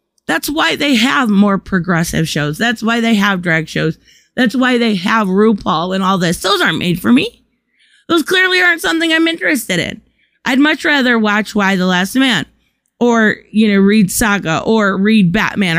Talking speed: 185 wpm